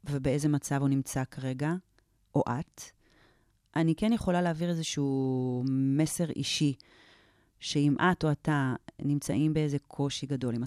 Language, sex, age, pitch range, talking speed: Hebrew, female, 30-49, 130-165 Hz, 130 wpm